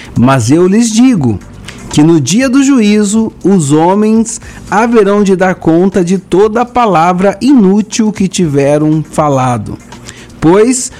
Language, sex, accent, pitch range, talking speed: Portuguese, male, Brazilian, 140-220 Hz, 130 wpm